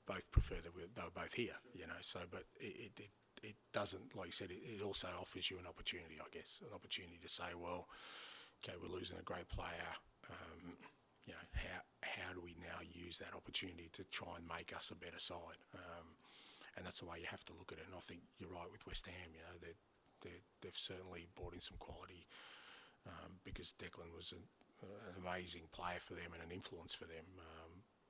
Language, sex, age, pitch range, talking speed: English, male, 30-49, 85-95 Hz, 215 wpm